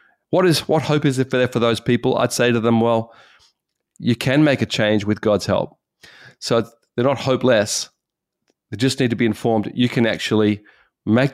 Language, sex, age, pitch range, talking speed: English, male, 40-59, 110-135 Hz, 190 wpm